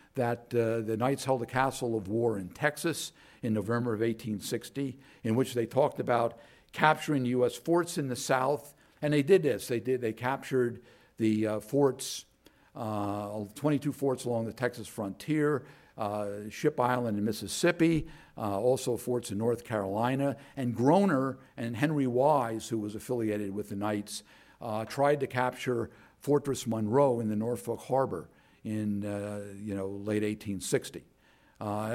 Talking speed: 155 wpm